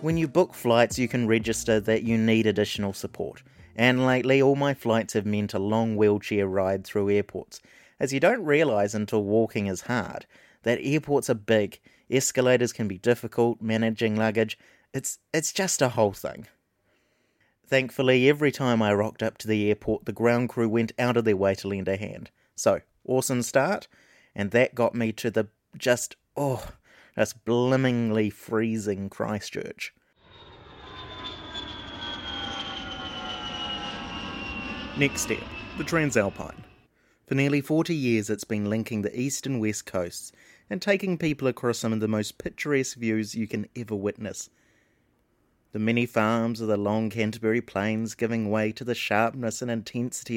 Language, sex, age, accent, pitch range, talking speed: English, male, 30-49, Australian, 105-125 Hz, 155 wpm